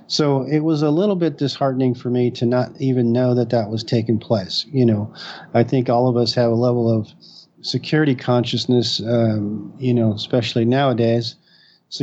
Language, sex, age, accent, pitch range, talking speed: English, male, 40-59, American, 115-135 Hz, 185 wpm